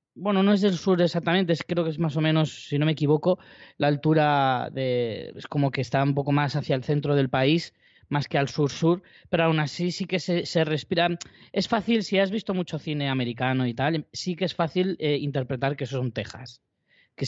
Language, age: Spanish, 20-39